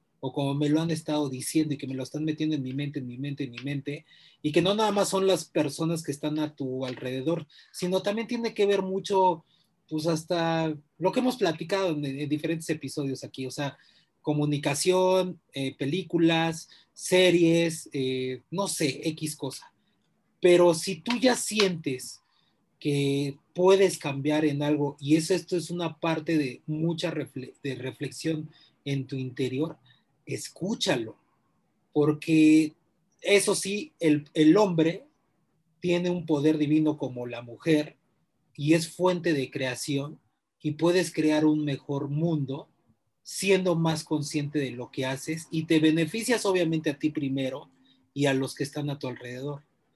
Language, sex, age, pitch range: Spanish, male, 30-49, 140-170 Hz